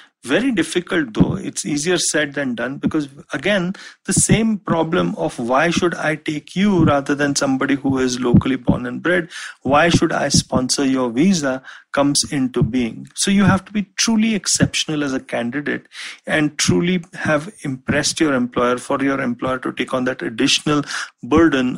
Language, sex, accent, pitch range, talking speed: English, male, Indian, 130-175 Hz, 170 wpm